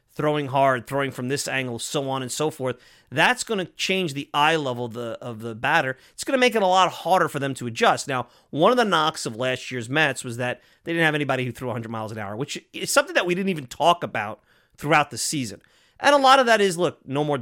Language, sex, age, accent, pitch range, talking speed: English, male, 30-49, American, 120-160 Hz, 260 wpm